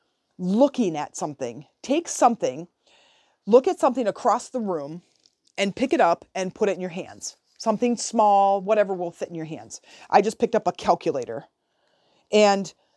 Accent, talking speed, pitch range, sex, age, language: American, 165 wpm, 180-245 Hz, female, 30-49, English